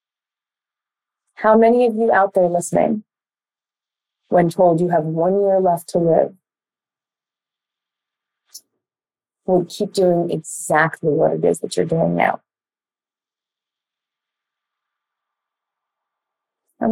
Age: 30-49